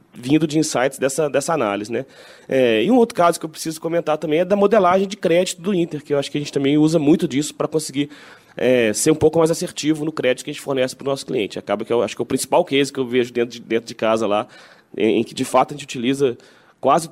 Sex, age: male, 20-39